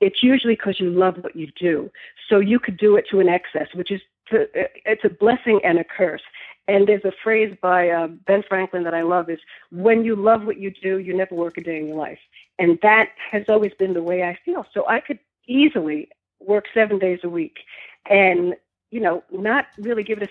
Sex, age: female, 50-69